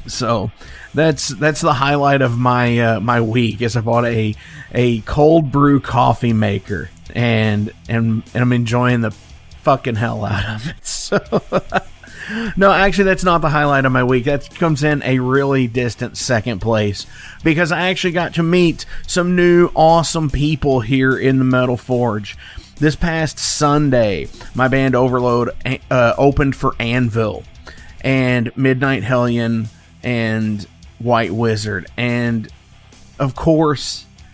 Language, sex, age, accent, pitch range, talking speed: English, male, 30-49, American, 110-130 Hz, 145 wpm